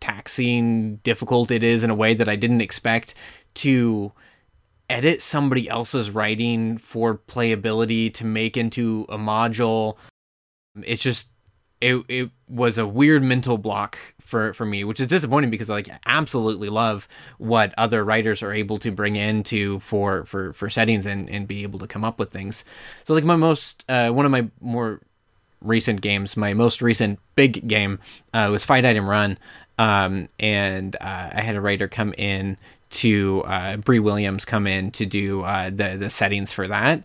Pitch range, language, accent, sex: 100-120 Hz, English, American, male